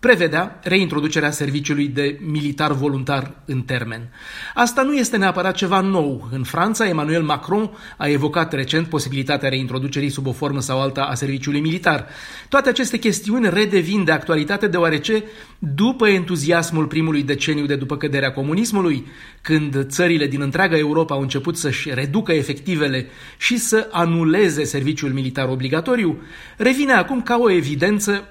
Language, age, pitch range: Romanian, 30-49, 145-195 Hz